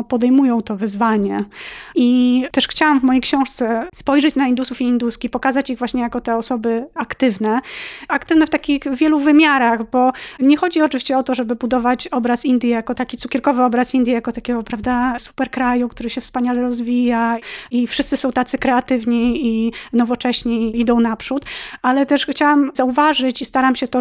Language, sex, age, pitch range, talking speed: Polish, female, 20-39, 230-265 Hz, 170 wpm